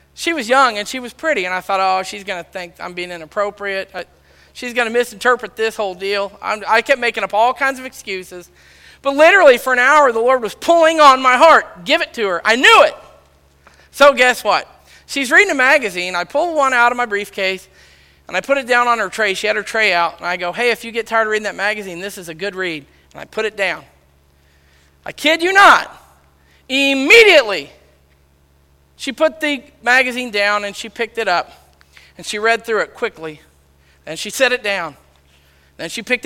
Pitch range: 175-275 Hz